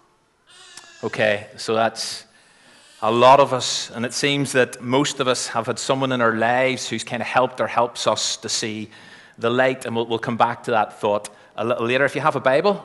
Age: 30-49